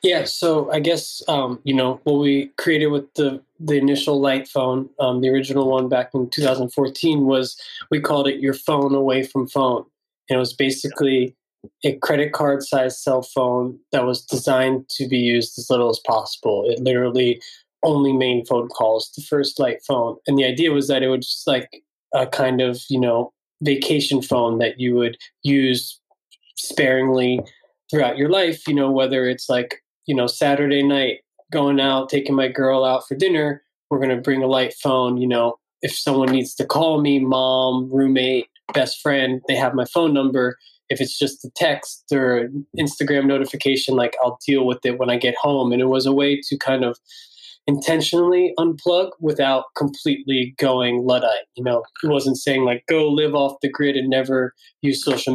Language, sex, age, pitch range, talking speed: English, male, 20-39, 130-145 Hz, 190 wpm